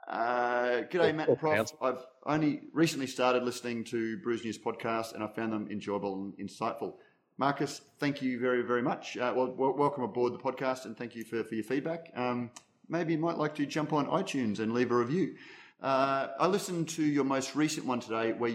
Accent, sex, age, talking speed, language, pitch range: Australian, male, 30-49, 195 wpm, English, 105-130 Hz